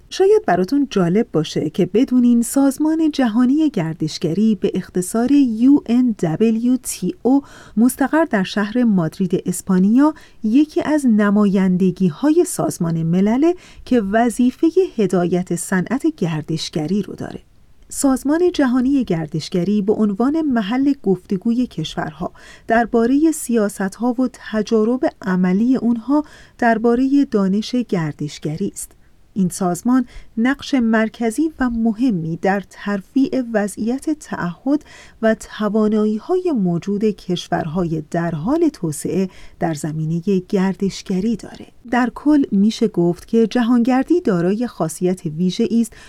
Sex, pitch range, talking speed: female, 185-255 Hz, 100 wpm